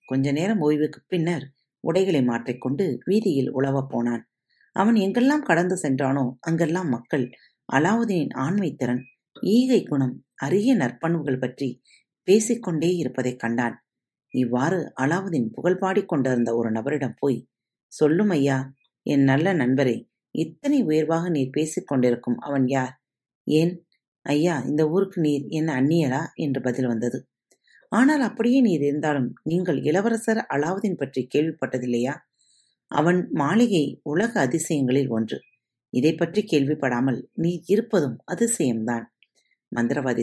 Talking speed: 110 wpm